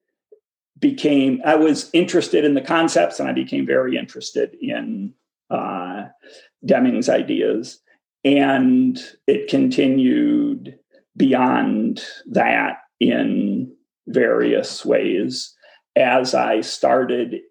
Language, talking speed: English, 95 wpm